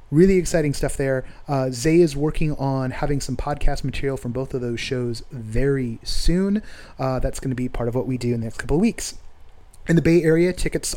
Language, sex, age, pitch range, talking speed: English, male, 30-49, 125-155 Hz, 215 wpm